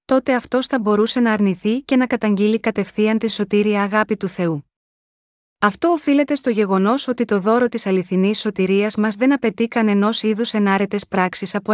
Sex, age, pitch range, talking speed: female, 30-49, 200-245 Hz, 170 wpm